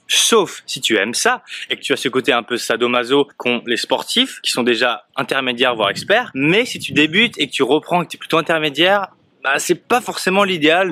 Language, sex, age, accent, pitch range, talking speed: French, male, 20-39, French, 130-170 Hz, 225 wpm